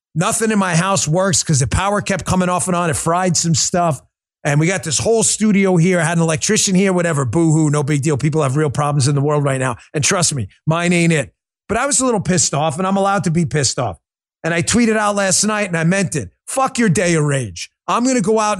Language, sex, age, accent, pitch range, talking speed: English, male, 30-49, American, 155-210 Hz, 270 wpm